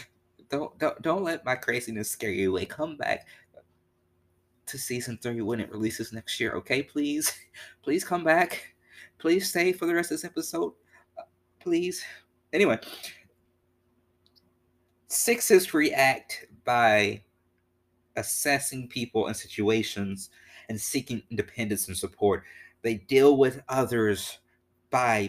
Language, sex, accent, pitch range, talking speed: English, male, American, 90-120 Hz, 120 wpm